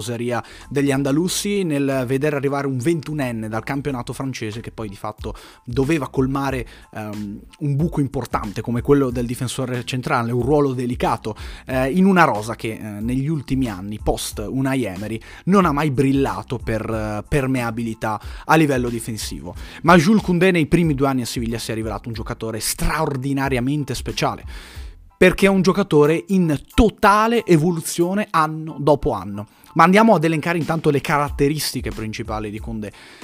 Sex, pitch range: male, 120-165 Hz